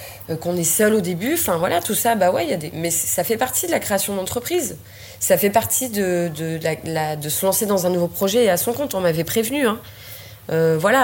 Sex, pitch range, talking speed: female, 160-210 Hz, 245 wpm